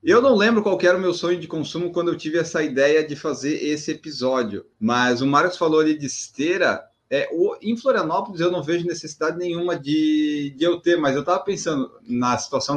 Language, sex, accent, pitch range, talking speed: Portuguese, male, Brazilian, 130-175 Hz, 215 wpm